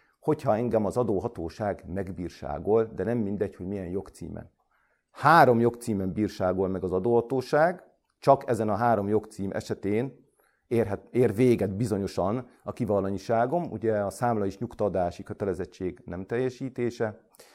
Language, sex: Hungarian, male